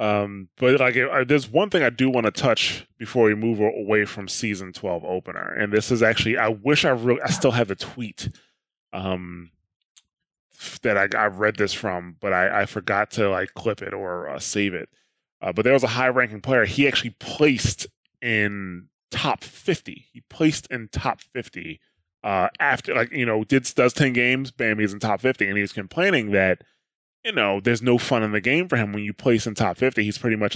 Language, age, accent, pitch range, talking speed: English, 20-39, American, 100-130 Hz, 210 wpm